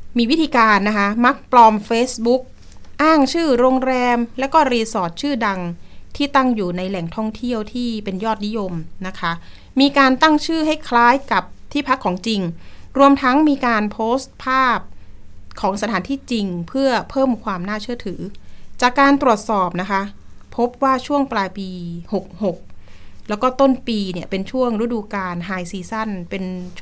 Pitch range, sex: 190-255 Hz, female